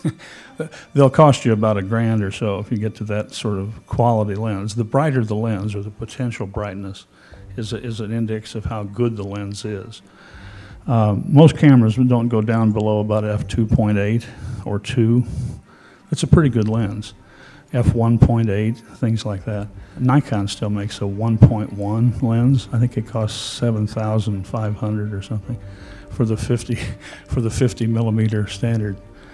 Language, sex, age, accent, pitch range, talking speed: English, male, 50-69, American, 105-120 Hz, 160 wpm